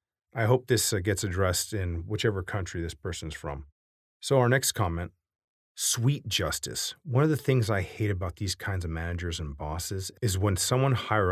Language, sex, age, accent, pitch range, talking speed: English, male, 30-49, American, 85-115 Hz, 180 wpm